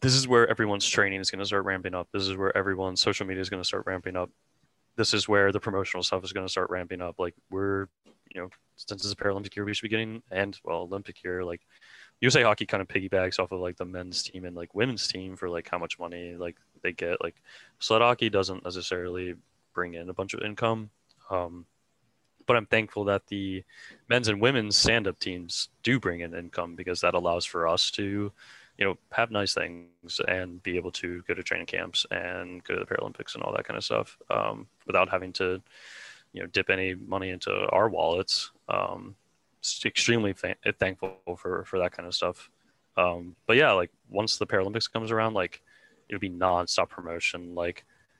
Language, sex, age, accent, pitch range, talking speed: English, male, 20-39, American, 90-105 Hz, 210 wpm